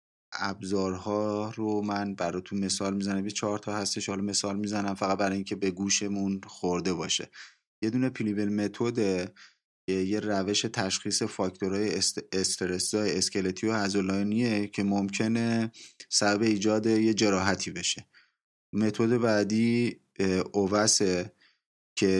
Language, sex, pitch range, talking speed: Persian, male, 95-105 Hz, 120 wpm